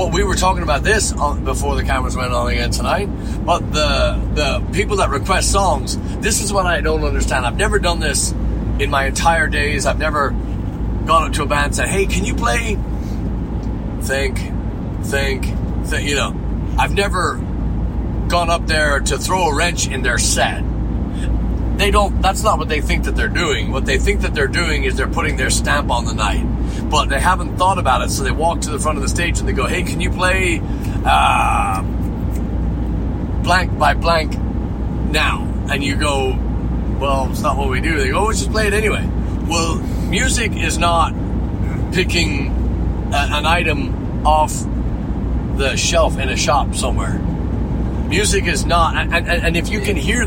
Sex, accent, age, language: male, American, 40-59, English